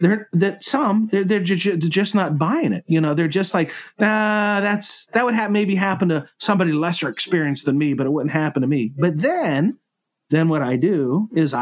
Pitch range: 150-205 Hz